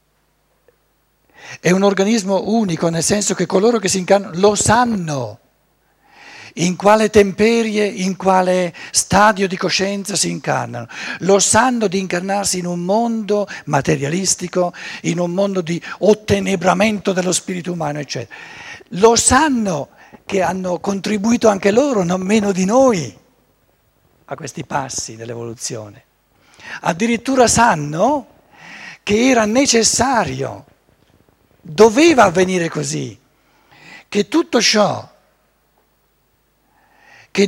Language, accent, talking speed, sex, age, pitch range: Italian, native, 105 wpm, male, 60-79, 175-225 Hz